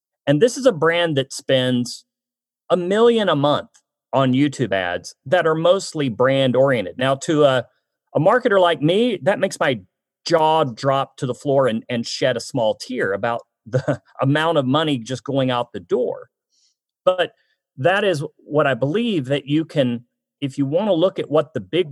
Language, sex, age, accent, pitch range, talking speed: English, male, 40-59, American, 130-180 Hz, 185 wpm